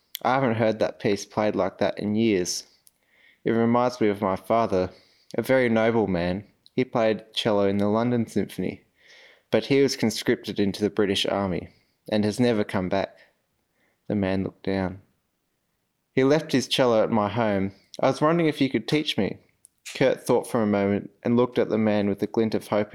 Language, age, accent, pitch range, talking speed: English, 20-39, Australian, 100-115 Hz, 195 wpm